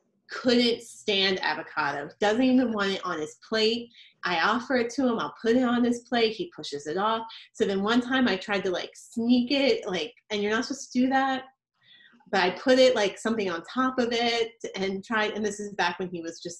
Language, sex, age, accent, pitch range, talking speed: English, female, 30-49, American, 185-245 Hz, 230 wpm